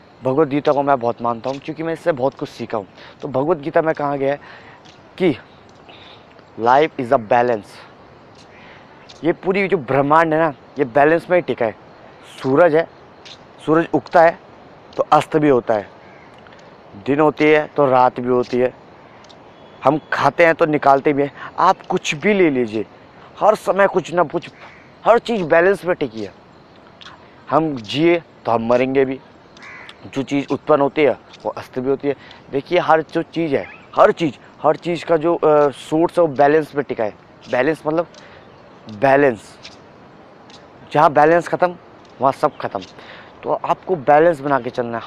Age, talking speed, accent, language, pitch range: 20-39, 170 wpm, native, Hindi, 130-165 Hz